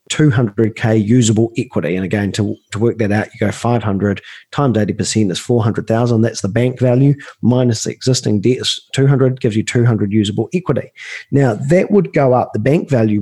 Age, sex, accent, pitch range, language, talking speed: 40-59, male, Australian, 110-145 Hz, English, 180 wpm